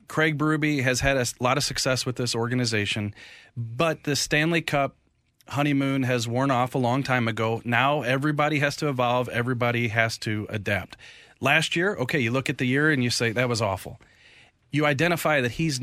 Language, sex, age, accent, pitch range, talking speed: English, male, 30-49, American, 125-155 Hz, 190 wpm